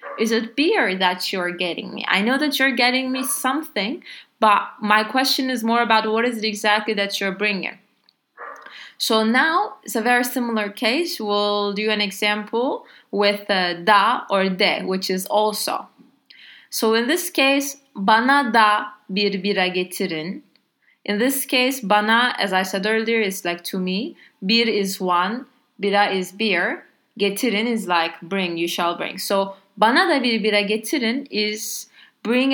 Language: English